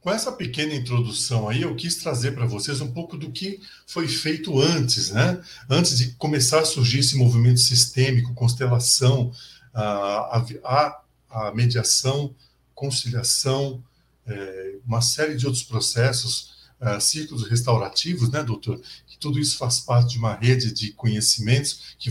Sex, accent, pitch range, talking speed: male, Brazilian, 120-160 Hz, 135 wpm